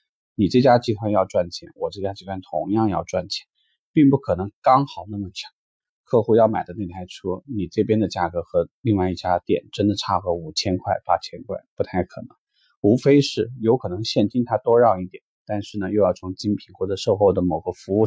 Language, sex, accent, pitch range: Chinese, male, native, 95-125 Hz